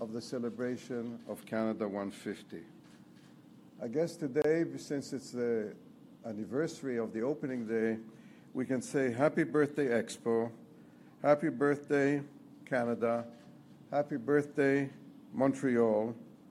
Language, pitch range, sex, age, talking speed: English, 120-150 Hz, male, 60-79, 105 wpm